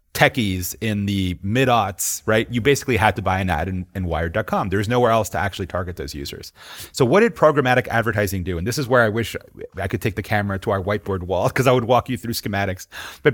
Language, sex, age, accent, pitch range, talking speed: English, male, 30-49, American, 95-130 Hz, 240 wpm